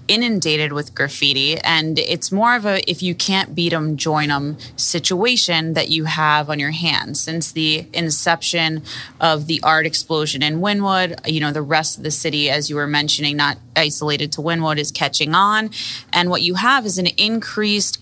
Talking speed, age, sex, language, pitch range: 185 wpm, 20-39, female, English, 150-175 Hz